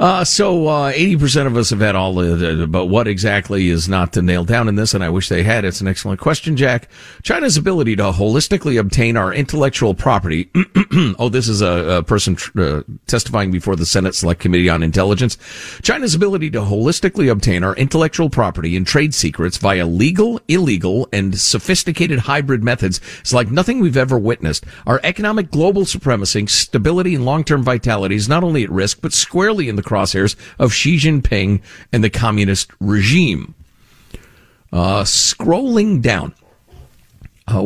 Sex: male